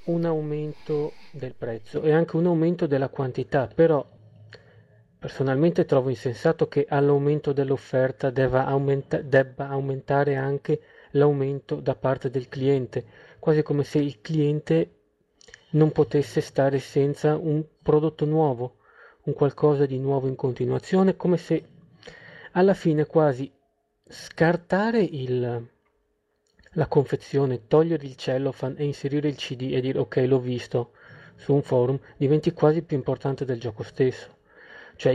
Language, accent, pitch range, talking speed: Italian, native, 130-155 Hz, 130 wpm